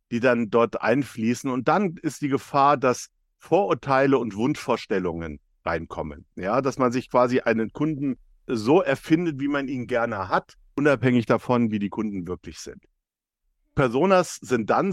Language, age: German, 50-69